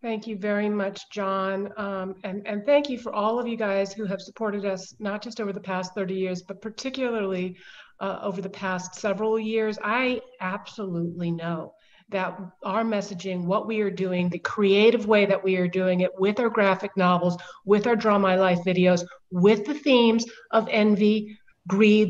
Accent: American